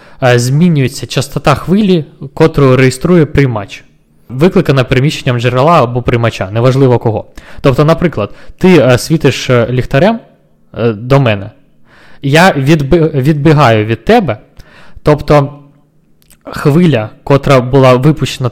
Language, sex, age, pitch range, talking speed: Ukrainian, male, 20-39, 125-160 Hz, 95 wpm